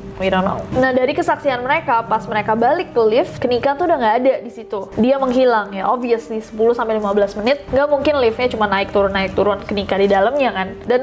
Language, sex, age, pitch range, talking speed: Indonesian, female, 20-39, 215-270 Hz, 200 wpm